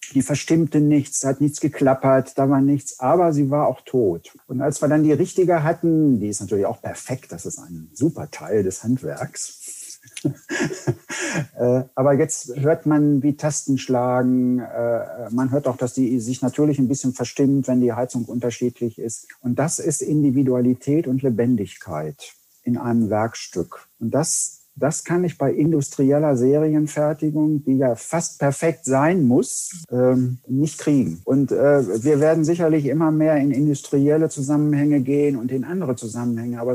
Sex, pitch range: male, 125-150 Hz